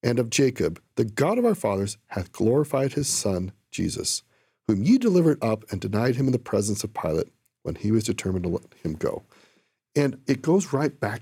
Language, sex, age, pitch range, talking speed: English, male, 40-59, 110-160 Hz, 205 wpm